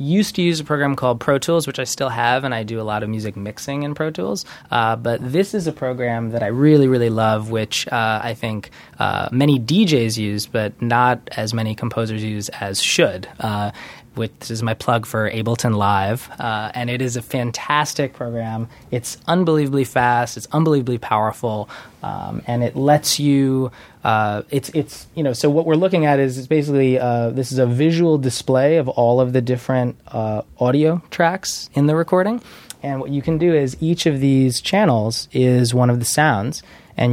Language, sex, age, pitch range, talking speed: English, male, 20-39, 110-135 Hz, 200 wpm